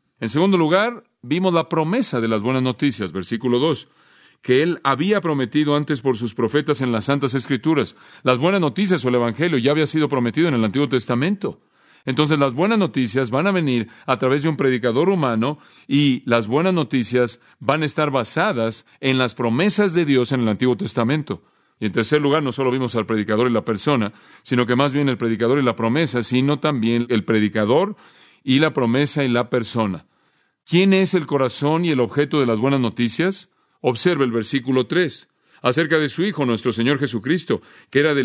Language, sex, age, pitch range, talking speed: Spanish, male, 40-59, 115-155 Hz, 195 wpm